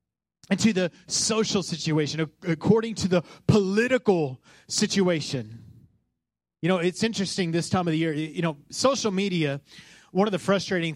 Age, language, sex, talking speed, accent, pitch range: 30-49, English, male, 150 wpm, American, 160-225 Hz